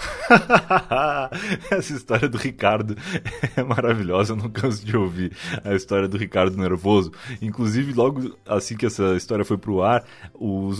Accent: Brazilian